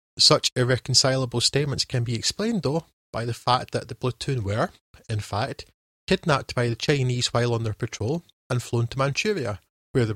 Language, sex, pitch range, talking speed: English, male, 110-135 Hz, 175 wpm